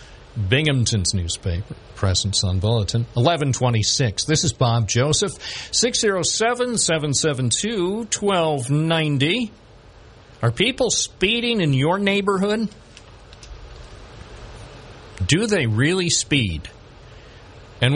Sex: male